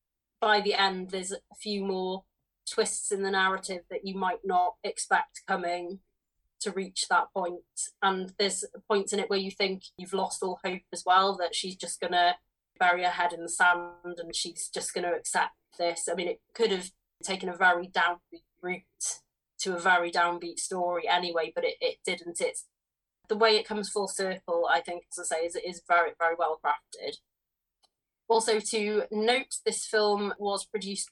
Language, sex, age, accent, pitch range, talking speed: English, female, 20-39, British, 175-210 Hz, 190 wpm